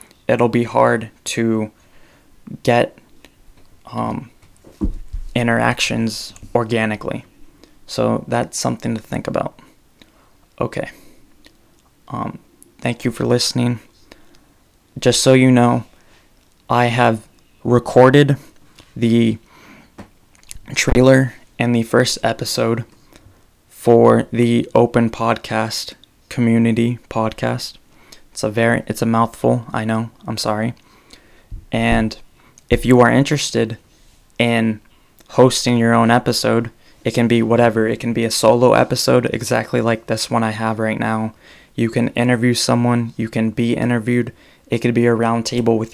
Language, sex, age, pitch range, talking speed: English, male, 20-39, 110-120 Hz, 120 wpm